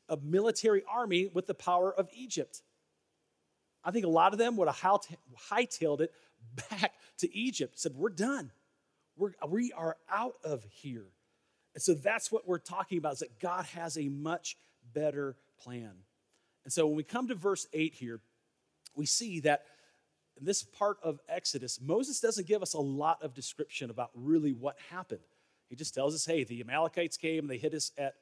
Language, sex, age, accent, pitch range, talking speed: English, male, 40-59, American, 140-180 Hz, 185 wpm